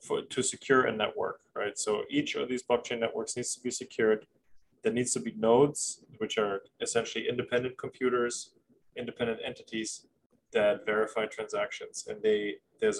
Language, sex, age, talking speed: English, male, 20-39, 155 wpm